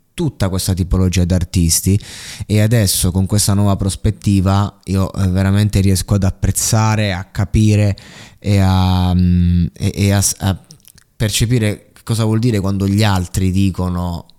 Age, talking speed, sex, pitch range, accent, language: 20-39, 130 wpm, male, 90-105 Hz, native, Italian